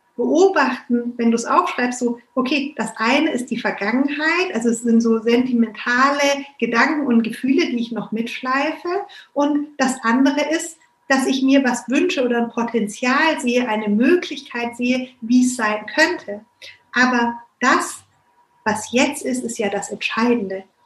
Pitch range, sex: 235-275 Hz, female